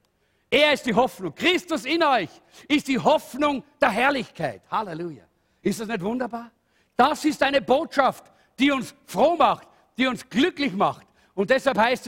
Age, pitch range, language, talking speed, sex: 50-69, 175-260 Hz, German, 160 wpm, male